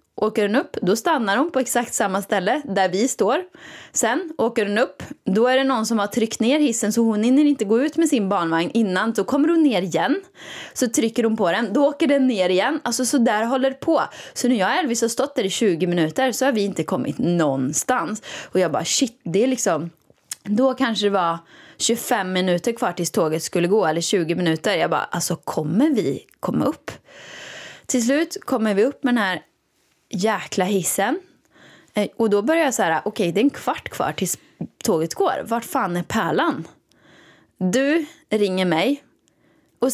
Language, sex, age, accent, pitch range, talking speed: Swedish, female, 20-39, native, 185-265 Hz, 200 wpm